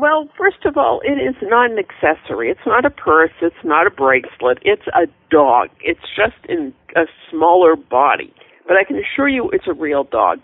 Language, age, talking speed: English, 50-69, 200 wpm